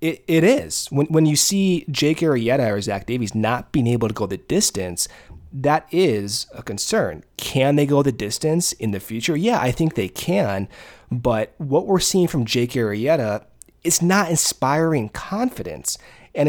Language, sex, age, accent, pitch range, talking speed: English, male, 30-49, American, 120-175 Hz, 175 wpm